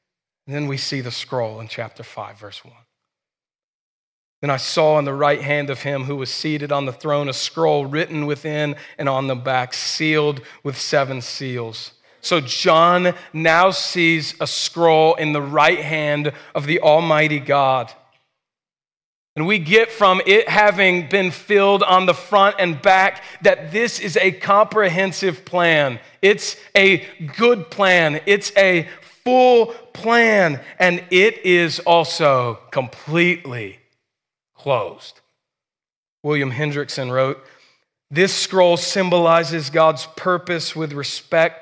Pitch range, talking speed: 140-180 Hz, 135 wpm